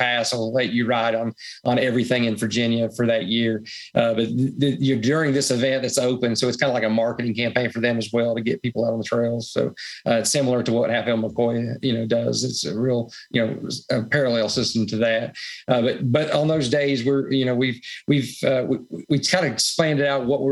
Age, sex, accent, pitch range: 40-59, male, American, 120-135 Hz